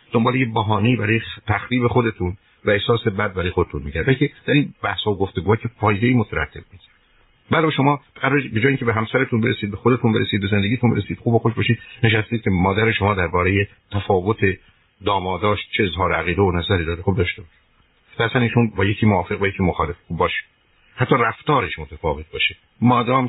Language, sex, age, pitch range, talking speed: Persian, male, 50-69, 95-115 Hz, 175 wpm